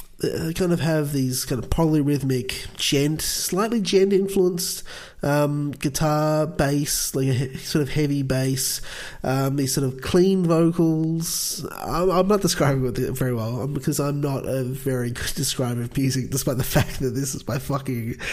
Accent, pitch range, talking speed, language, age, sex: Australian, 125-155 Hz, 170 wpm, English, 20-39, male